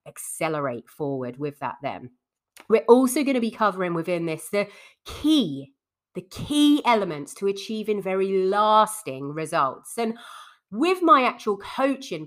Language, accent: English, British